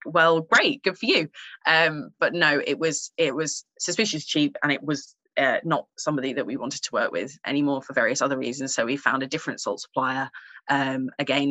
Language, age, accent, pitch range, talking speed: English, 20-39, British, 140-175 Hz, 210 wpm